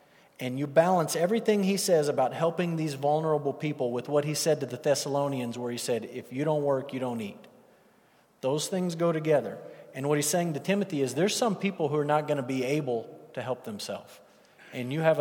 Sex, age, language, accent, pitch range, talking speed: male, 40-59, English, American, 130-165 Hz, 215 wpm